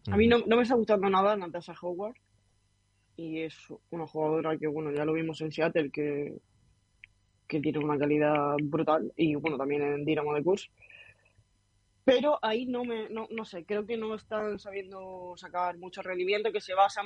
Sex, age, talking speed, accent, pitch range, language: female, 20-39, 185 wpm, Spanish, 160-190 Hz, Spanish